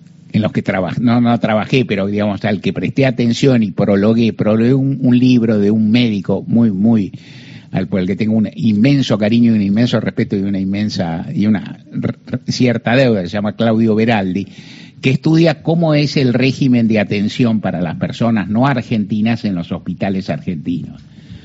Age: 60-79